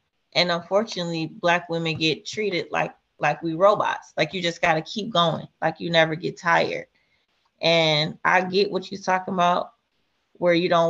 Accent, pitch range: American, 165-200 Hz